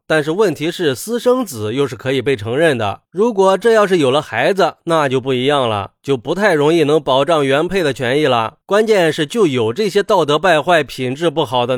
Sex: male